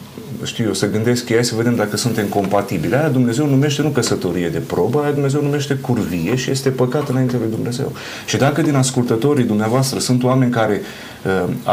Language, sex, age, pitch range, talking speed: Romanian, male, 30-49, 110-140 Hz, 175 wpm